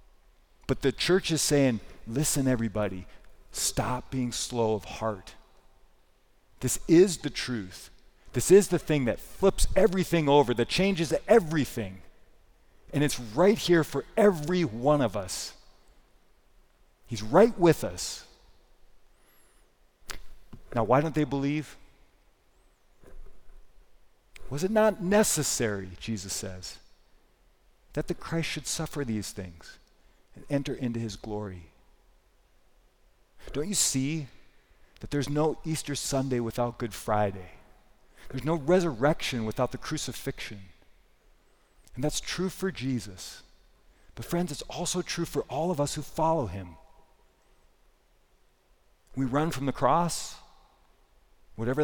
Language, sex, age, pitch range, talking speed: English, male, 40-59, 115-160 Hz, 120 wpm